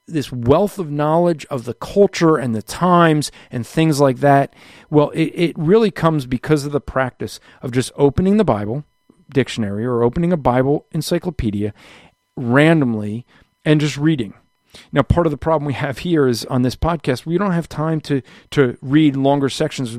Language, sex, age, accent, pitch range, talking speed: English, male, 40-59, American, 130-160 Hz, 175 wpm